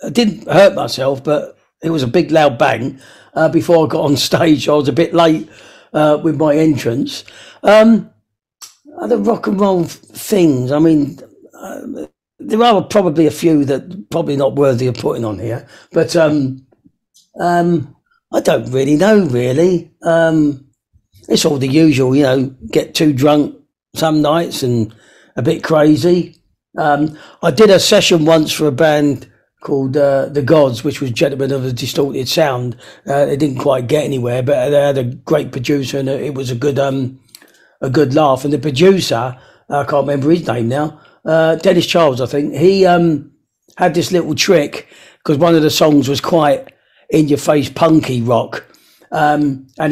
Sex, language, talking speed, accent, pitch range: male, English, 180 wpm, British, 135-165 Hz